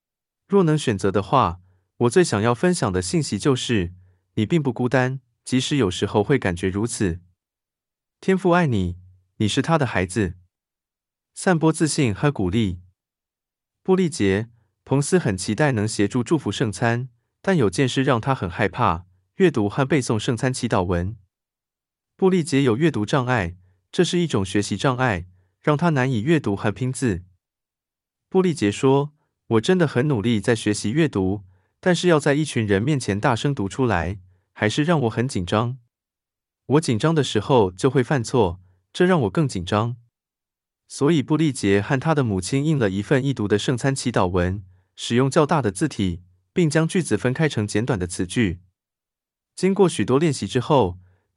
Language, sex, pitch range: Chinese, male, 100-145 Hz